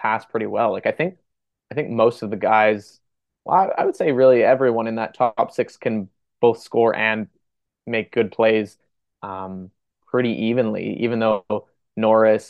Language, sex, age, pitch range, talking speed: English, male, 20-39, 110-120 Hz, 175 wpm